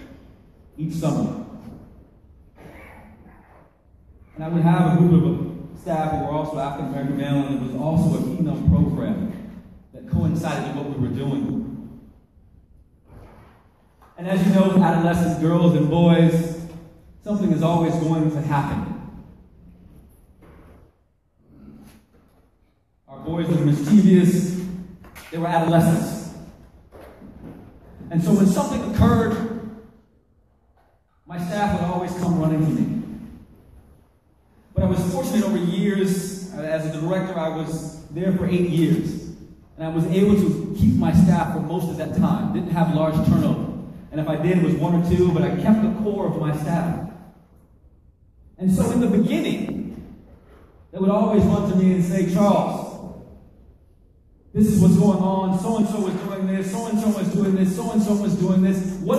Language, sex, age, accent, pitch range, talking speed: English, male, 30-49, American, 150-190 Hz, 155 wpm